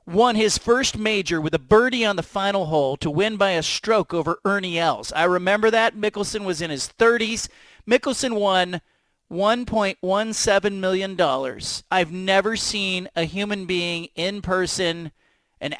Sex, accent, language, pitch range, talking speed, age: male, American, English, 180-245 Hz, 150 wpm, 40-59